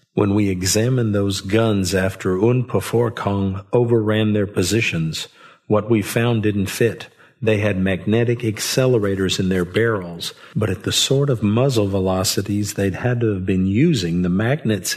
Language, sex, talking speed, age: English, male, 150 wpm, 50-69